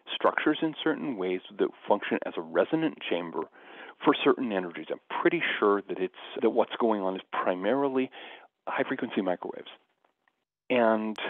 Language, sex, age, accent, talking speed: English, male, 40-59, American, 145 wpm